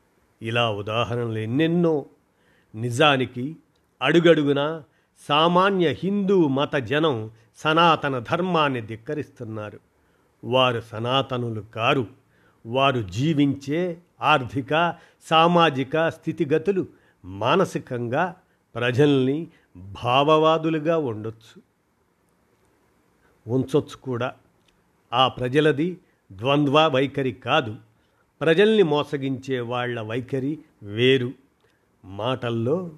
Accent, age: native, 50-69